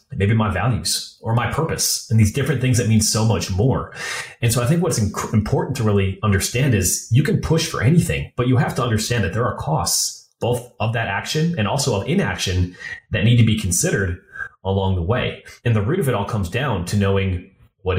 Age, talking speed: 30-49, 220 wpm